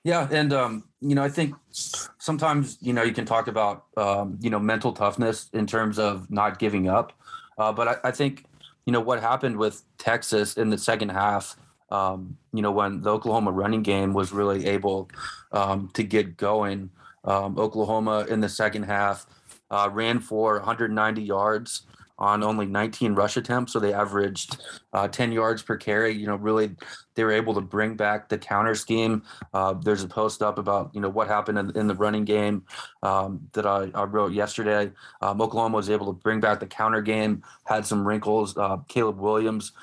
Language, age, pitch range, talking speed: English, 20-39, 100-110 Hz, 195 wpm